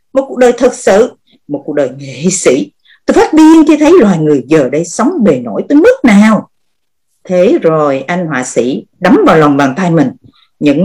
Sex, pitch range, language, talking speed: female, 160-250 Hz, Vietnamese, 205 wpm